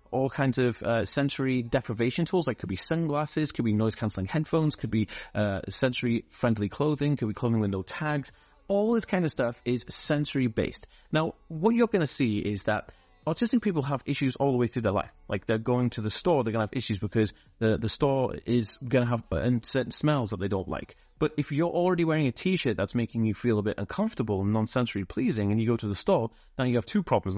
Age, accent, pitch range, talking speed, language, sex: 30-49, British, 110-145 Hz, 230 wpm, English, male